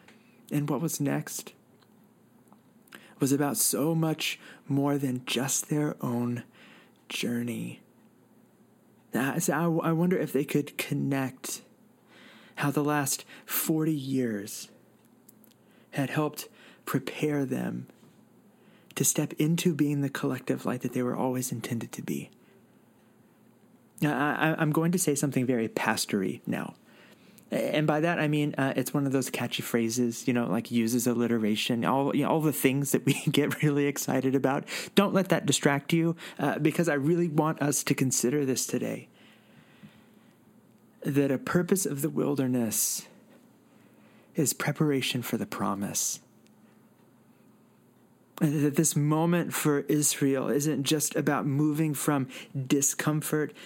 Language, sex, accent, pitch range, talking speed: English, male, American, 130-155 Hz, 130 wpm